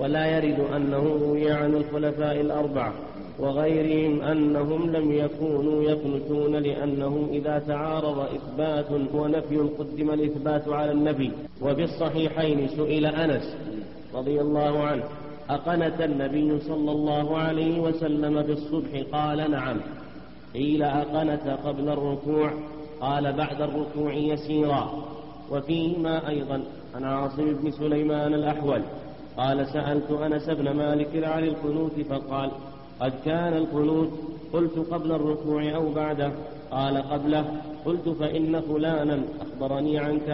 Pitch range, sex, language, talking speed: 145-150 Hz, male, Arabic, 110 wpm